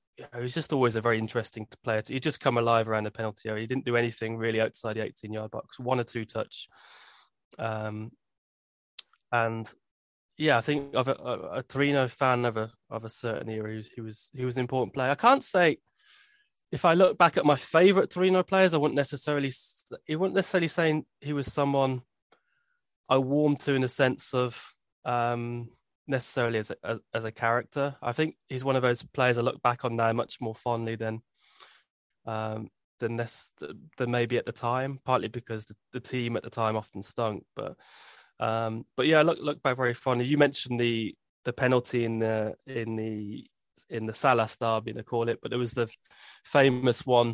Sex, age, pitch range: male, 20-39, 110-130 Hz